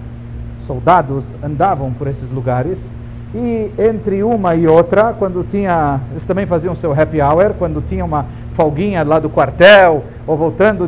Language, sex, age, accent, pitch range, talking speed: Portuguese, male, 50-69, Brazilian, 115-175 Hz, 150 wpm